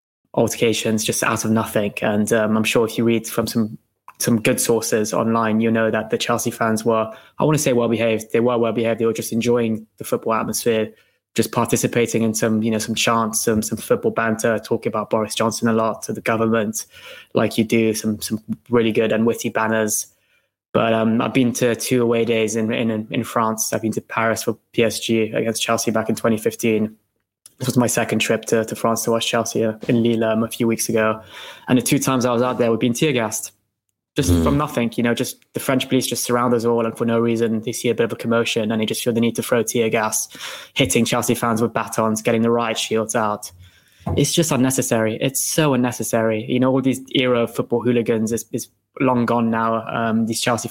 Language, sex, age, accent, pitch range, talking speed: English, male, 20-39, British, 110-120 Hz, 225 wpm